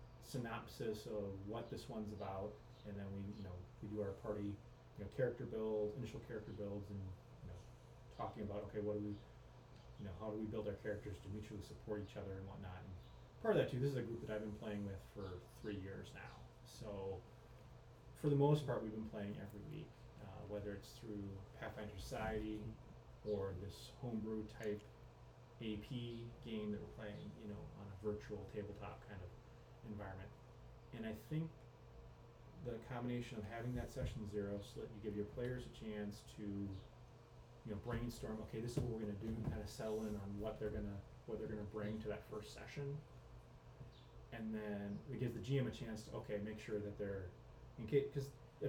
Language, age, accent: English, 30-49, American